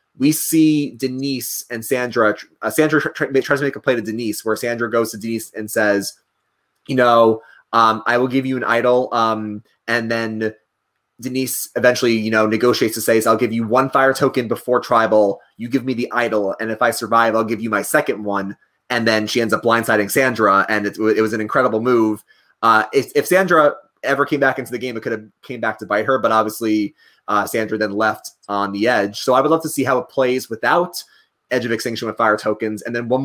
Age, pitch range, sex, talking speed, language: 30-49, 110-135 Hz, male, 220 wpm, English